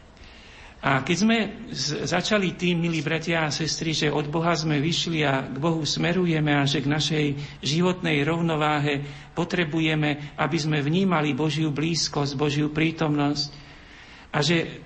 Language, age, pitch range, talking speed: Slovak, 50-69, 140-165 Hz, 135 wpm